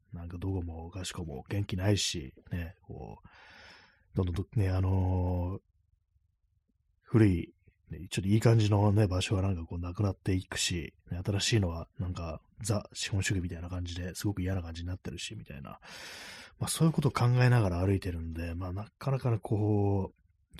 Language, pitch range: Japanese, 90-105 Hz